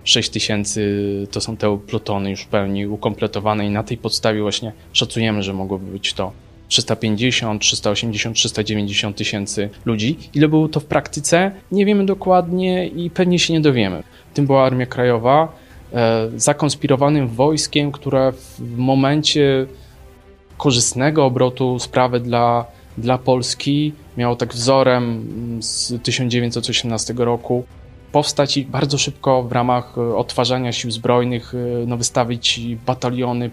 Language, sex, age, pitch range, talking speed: Polish, male, 20-39, 110-135 Hz, 125 wpm